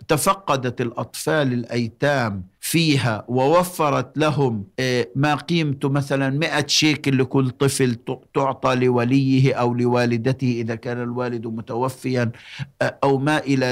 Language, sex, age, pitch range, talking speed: Arabic, male, 60-79, 115-140 Hz, 105 wpm